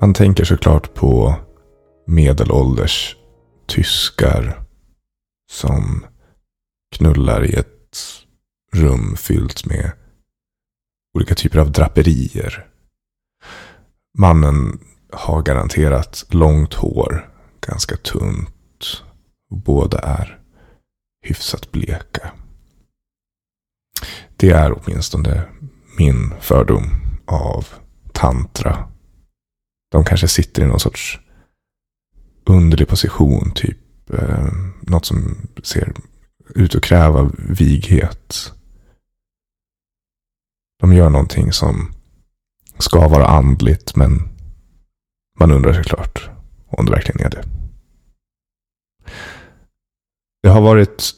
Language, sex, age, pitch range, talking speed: Swedish, male, 30-49, 75-95 Hz, 85 wpm